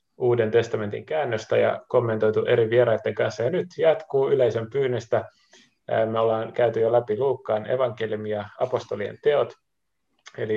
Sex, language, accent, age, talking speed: male, Finnish, native, 30-49, 130 wpm